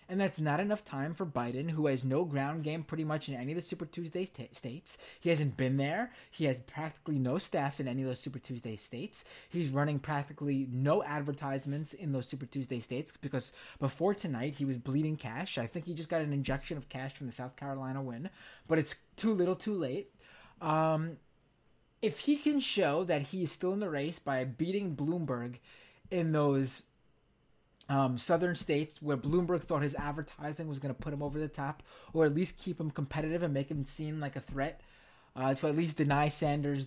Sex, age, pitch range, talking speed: male, 20-39, 135-175 Hz, 205 wpm